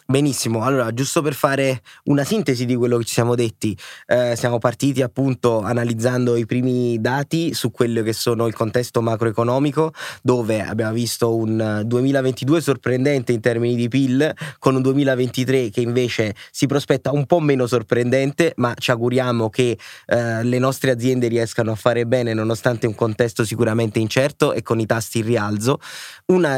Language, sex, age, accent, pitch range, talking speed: Italian, male, 20-39, native, 115-135 Hz, 165 wpm